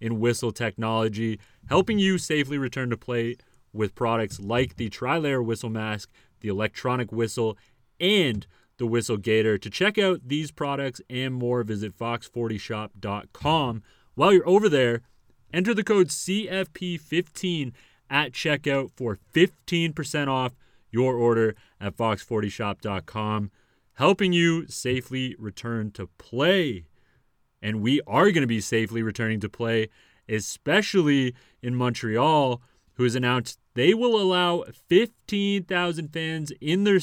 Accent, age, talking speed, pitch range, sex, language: American, 30-49, 125 wpm, 110-145 Hz, male, English